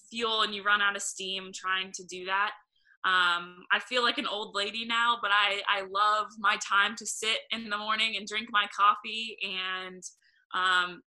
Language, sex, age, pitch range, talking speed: English, female, 20-39, 185-210 Hz, 195 wpm